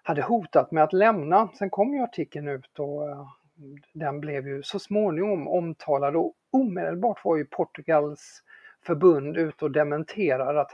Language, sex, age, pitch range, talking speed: English, male, 50-69, 140-175 Hz, 150 wpm